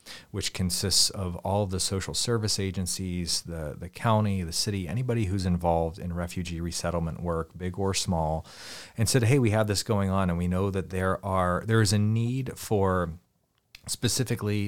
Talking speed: 180 wpm